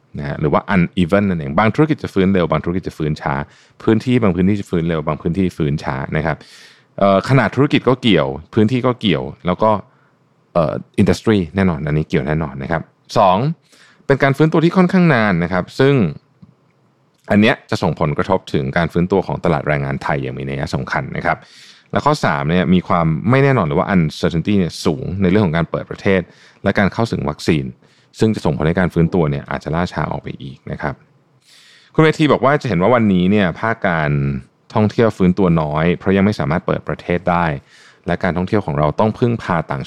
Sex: male